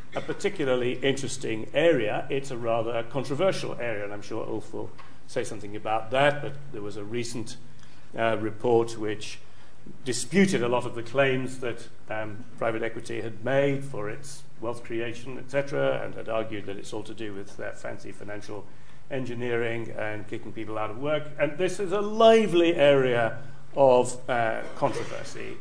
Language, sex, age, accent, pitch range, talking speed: English, male, 40-59, British, 110-140 Hz, 170 wpm